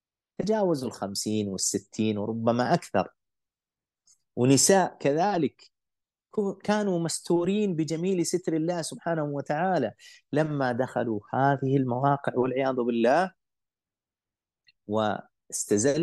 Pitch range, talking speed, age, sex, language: 105-145 Hz, 80 wpm, 30-49, male, Arabic